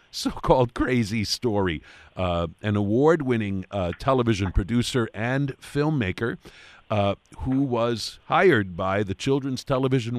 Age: 50-69